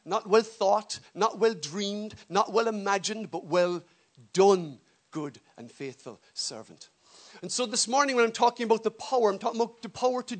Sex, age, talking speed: male, 50-69, 185 wpm